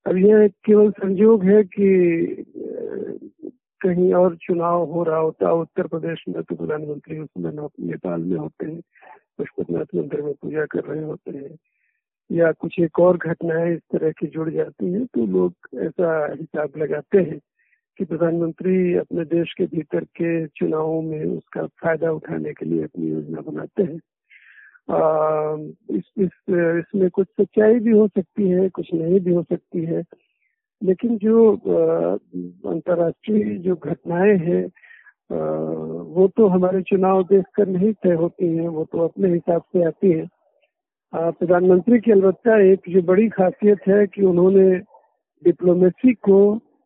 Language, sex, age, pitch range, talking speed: Hindi, male, 50-69, 165-200 Hz, 150 wpm